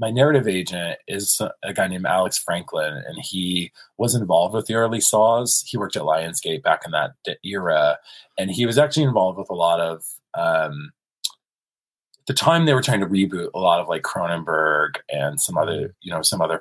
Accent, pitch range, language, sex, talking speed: American, 95-130 Hz, English, male, 195 wpm